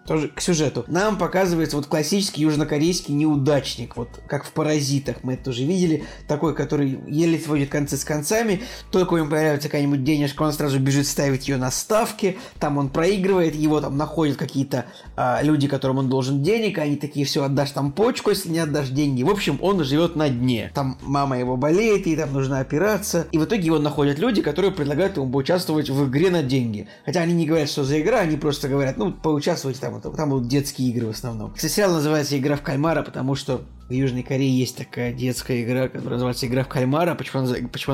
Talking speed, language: 200 wpm, Russian